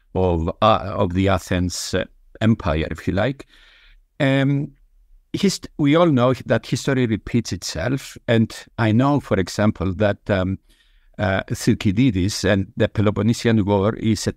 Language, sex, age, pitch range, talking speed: English, male, 50-69, 95-120 Hz, 140 wpm